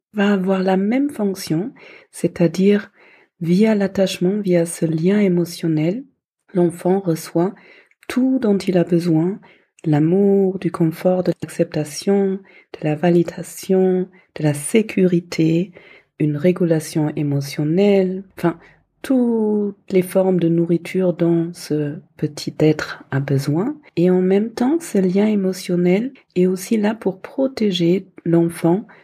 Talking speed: 120 wpm